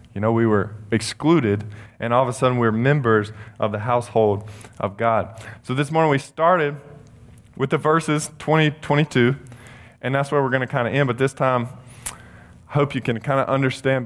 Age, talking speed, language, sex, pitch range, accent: 20-39, 190 wpm, English, male, 110-135 Hz, American